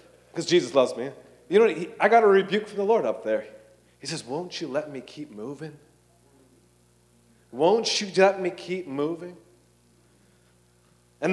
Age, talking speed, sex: 40-59, 160 wpm, male